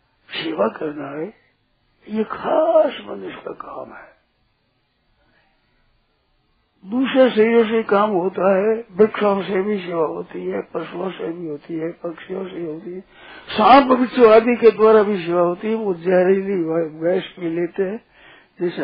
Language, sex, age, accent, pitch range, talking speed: Hindi, male, 60-79, native, 175-220 Hz, 140 wpm